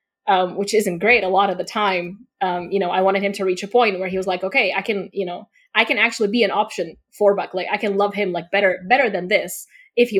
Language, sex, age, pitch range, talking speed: English, female, 20-39, 185-220 Hz, 280 wpm